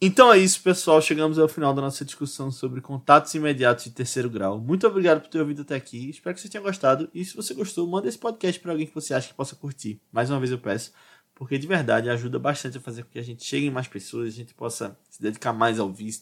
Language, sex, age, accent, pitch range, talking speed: Portuguese, male, 20-39, Brazilian, 115-160 Hz, 265 wpm